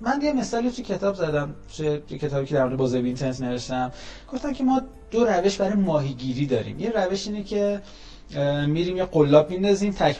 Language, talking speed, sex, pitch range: Persian, 180 wpm, male, 140-185 Hz